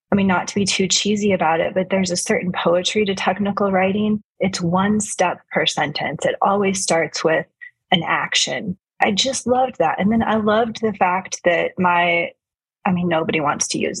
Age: 30-49